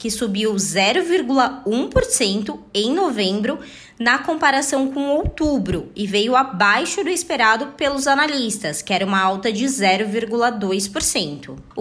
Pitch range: 215-285 Hz